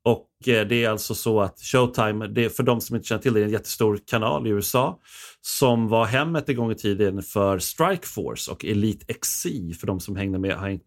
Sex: male